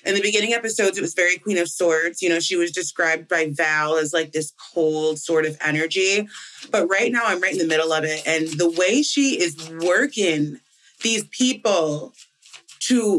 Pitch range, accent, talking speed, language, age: 155-200 Hz, American, 195 wpm, English, 30-49